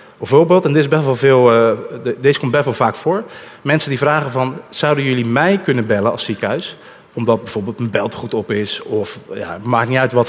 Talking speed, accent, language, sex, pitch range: 225 wpm, Dutch, Dutch, male, 115-155 Hz